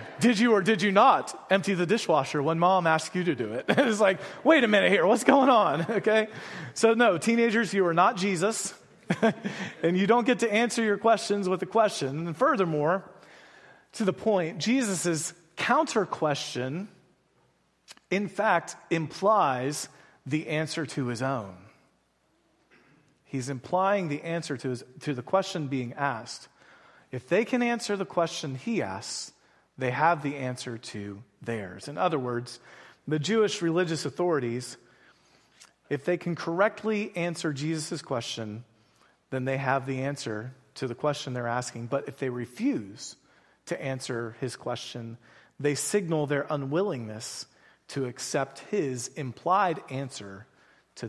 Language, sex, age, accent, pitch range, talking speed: English, male, 30-49, American, 130-190 Hz, 150 wpm